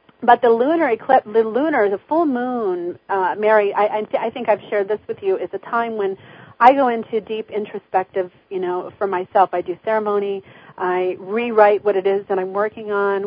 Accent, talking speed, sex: American, 210 wpm, female